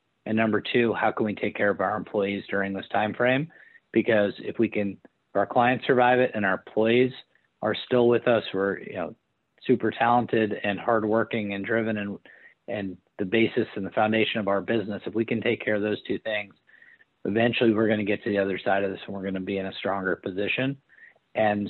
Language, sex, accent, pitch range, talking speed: English, male, American, 100-115 Hz, 220 wpm